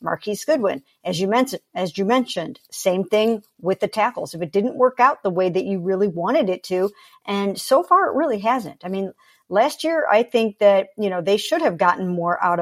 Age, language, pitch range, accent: 50-69, English, 180-230 Hz, American